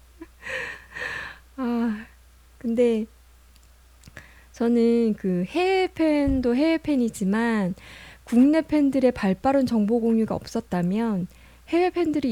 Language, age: Korean, 20-39